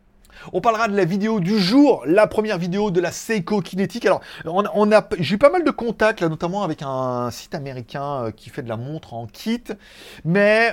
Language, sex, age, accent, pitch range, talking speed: French, male, 30-49, French, 135-195 Hz, 220 wpm